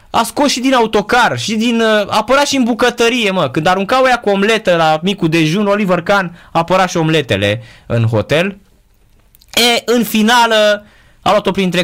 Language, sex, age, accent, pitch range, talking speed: Romanian, male, 20-39, native, 130-195 Hz, 170 wpm